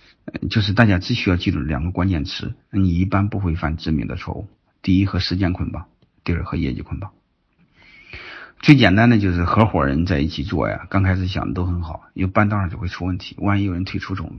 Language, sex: Chinese, male